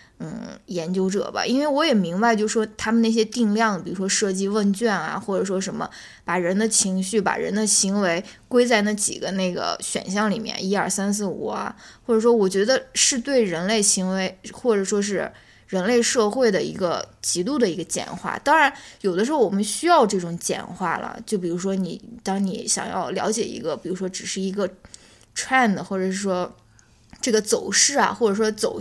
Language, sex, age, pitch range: Chinese, female, 10-29, 190-230 Hz